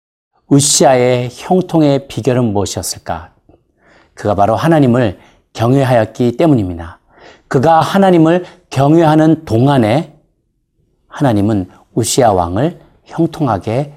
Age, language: 40-59, Korean